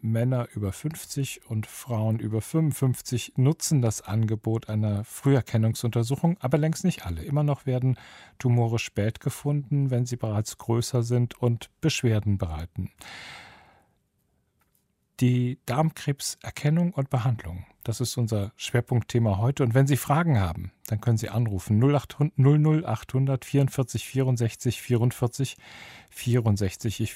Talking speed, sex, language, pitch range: 120 wpm, male, German, 105-130 Hz